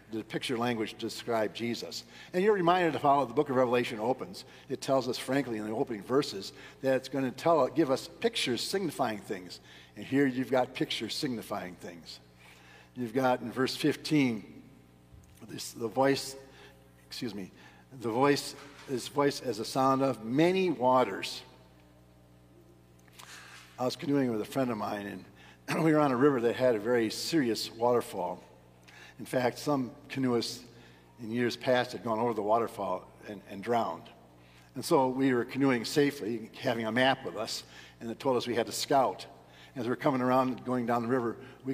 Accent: American